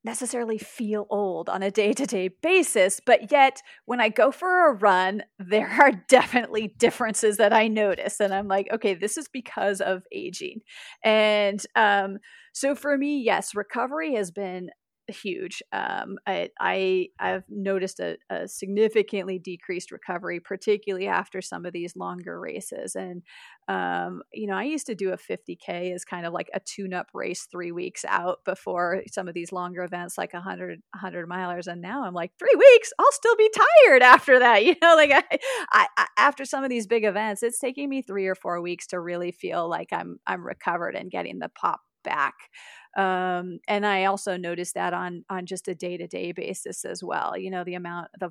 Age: 30-49